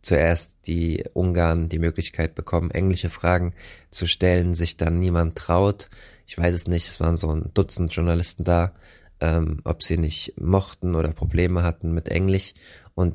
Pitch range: 80-95 Hz